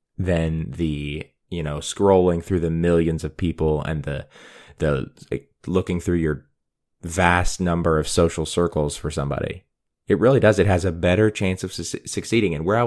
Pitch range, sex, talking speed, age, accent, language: 80-95 Hz, male, 175 wpm, 20-39, American, English